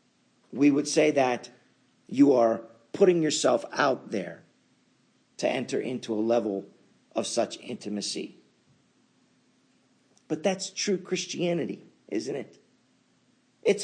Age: 50-69